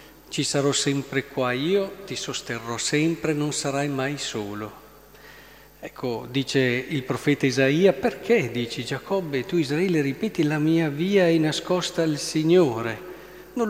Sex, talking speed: male, 135 wpm